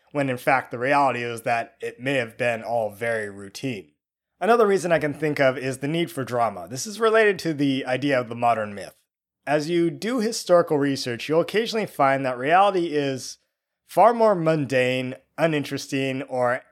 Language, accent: English, American